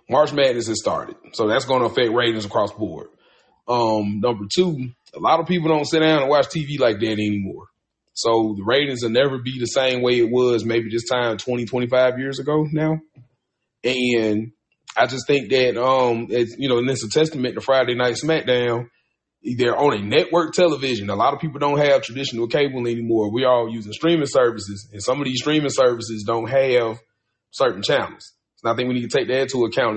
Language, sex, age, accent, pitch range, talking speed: English, male, 30-49, American, 115-140 Hz, 205 wpm